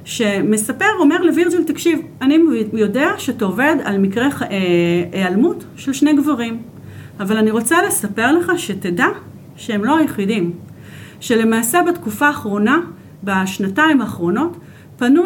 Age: 40-59